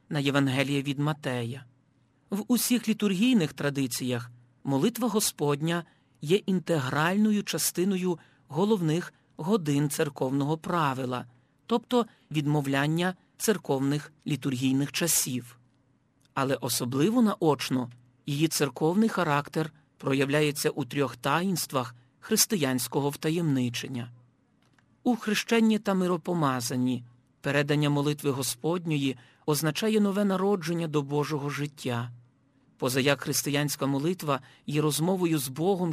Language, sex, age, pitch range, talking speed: Ukrainian, male, 40-59, 135-180 Hz, 90 wpm